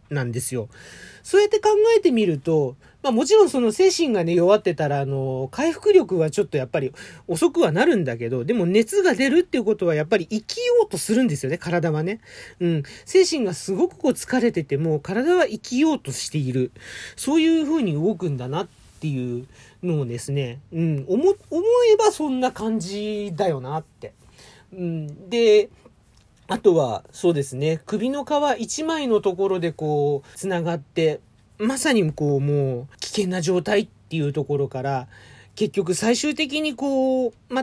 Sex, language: male, Japanese